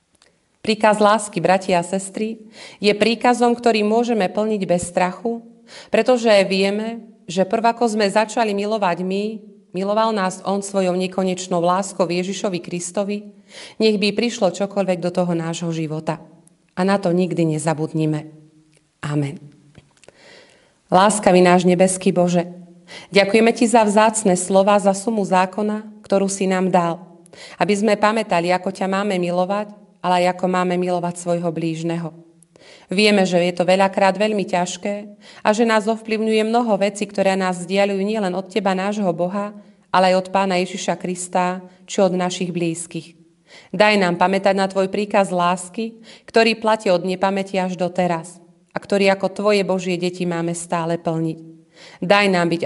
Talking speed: 150 wpm